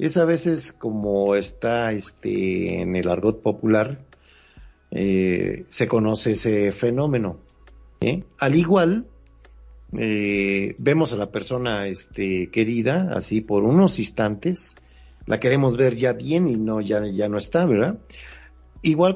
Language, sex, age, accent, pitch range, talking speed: Spanish, male, 50-69, Mexican, 100-125 Hz, 130 wpm